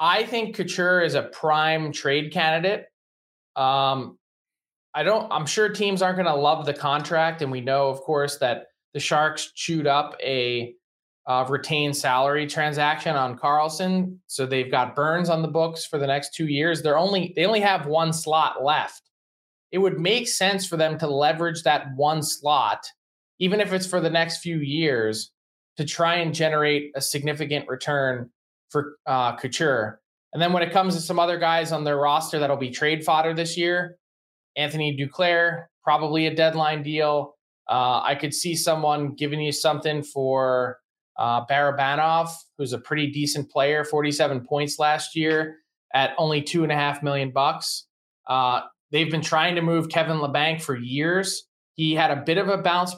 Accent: American